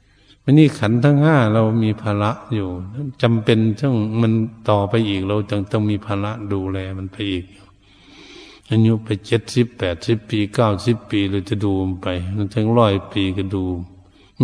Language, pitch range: Thai, 100-115 Hz